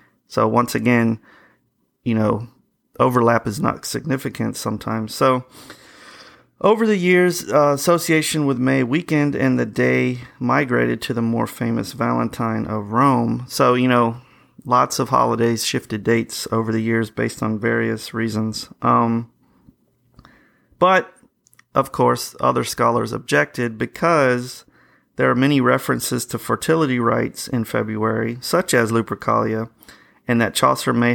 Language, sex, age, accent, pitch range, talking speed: English, male, 30-49, American, 110-135 Hz, 135 wpm